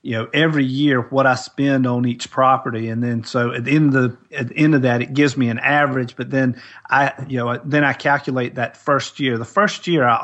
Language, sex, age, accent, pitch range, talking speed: English, male, 40-59, American, 120-145 Hz, 250 wpm